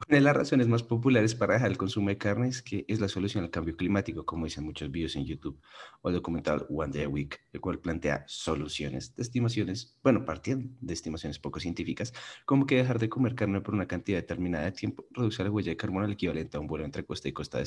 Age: 30-49